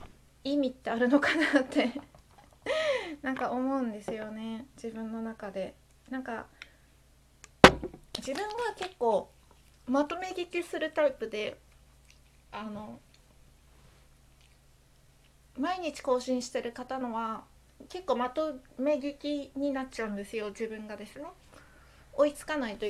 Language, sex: Japanese, female